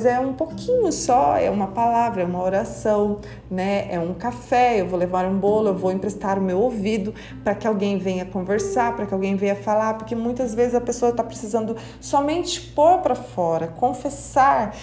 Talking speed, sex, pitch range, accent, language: 190 wpm, female, 190-235 Hz, Brazilian, Portuguese